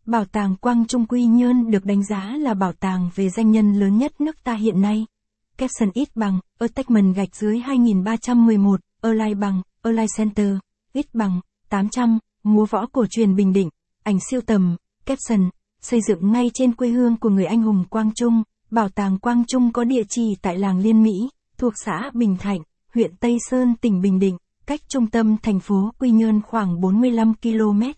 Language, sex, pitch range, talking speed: Vietnamese, female, 200-235 Hz, 195 wpm